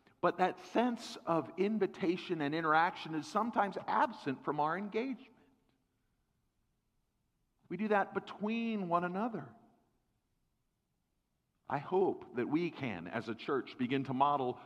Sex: male